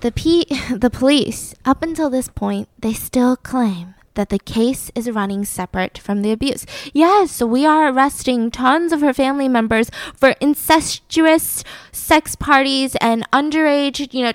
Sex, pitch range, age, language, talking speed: female, 235-310 Hz, 10-29, English, 155 wpm